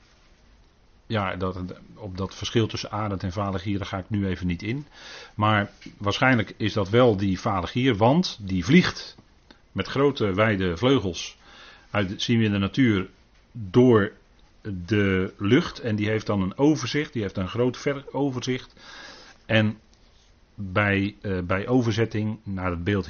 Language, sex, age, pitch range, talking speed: Dutch, male, 40-59, 90-110 Hz, 150 wpm